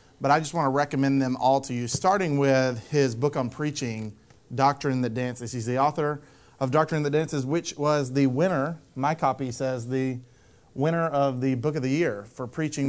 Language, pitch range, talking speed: English, 120-145 Hz, 210 wpm